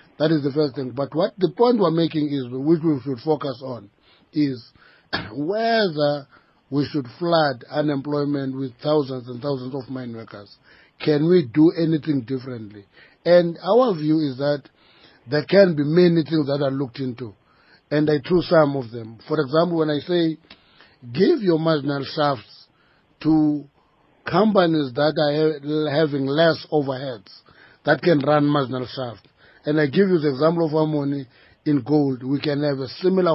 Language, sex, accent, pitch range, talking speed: English, male, South African, 135-160 Hz, 165 wpm